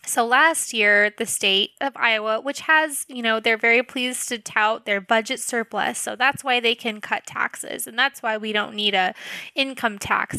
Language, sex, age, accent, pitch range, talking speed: English, female, 10-29, American, 205-240 Hz, 200 wpm